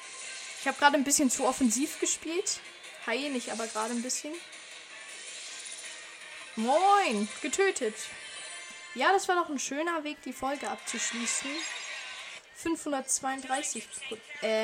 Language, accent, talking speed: German, German, 110 wpm